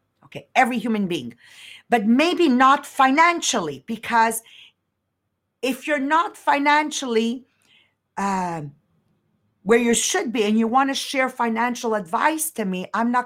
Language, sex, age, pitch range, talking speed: English, female, 50-69, 215-275 Hz, 130 wpm